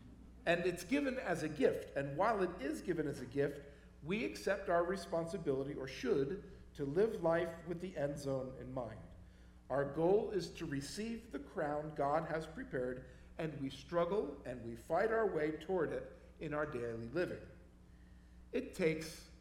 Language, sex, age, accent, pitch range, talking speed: English, male, 50-69, American, 130-190 Hz, 170 wpm